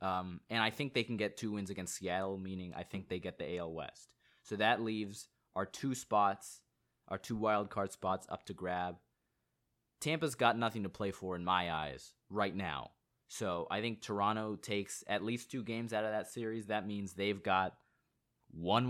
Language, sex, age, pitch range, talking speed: English, male, 20-39, 95-120 Hz, 195 wpm